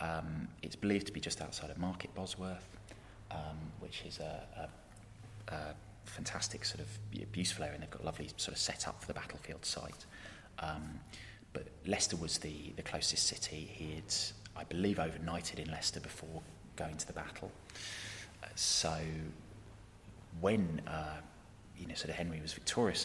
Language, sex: English, male